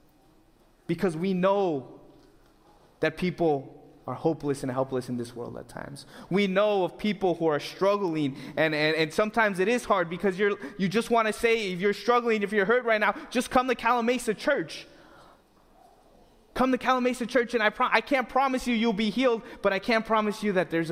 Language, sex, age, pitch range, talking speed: English, male, 20-39, 130-205 Hz, 205 wpm